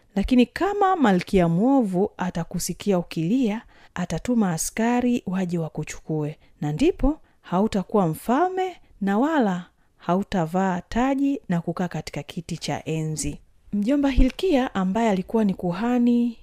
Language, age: Swahili, 30-49